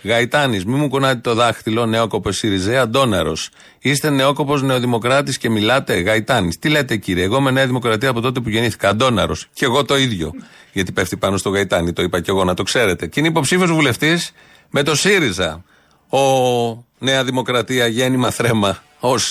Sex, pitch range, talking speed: male, 110-150 Hz, 175 wpm